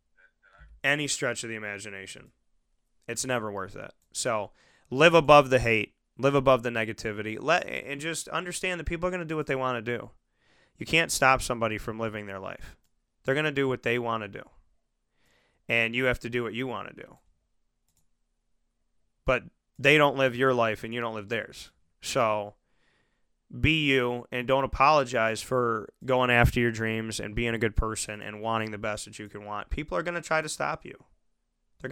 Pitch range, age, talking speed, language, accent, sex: 115-140 Hz, 20-39, 195 wpm, English, American, male